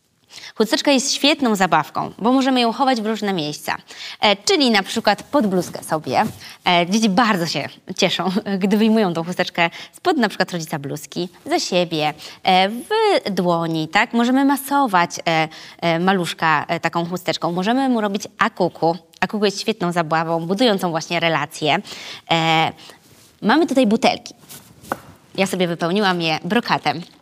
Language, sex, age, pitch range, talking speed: Polish, female, 20-39, 170-230 Hz, 145 wpm